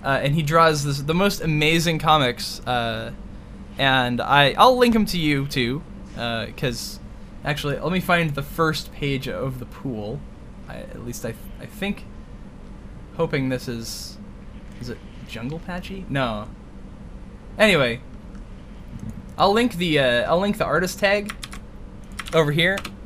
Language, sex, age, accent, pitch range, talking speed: English, male, 10-29, American, 120-170 Hz, 150 wpm